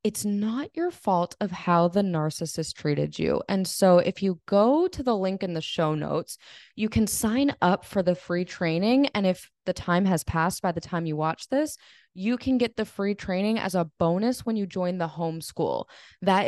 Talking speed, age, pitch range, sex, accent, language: 210 wpm, 20-39, 165-220 Hz, female, American, English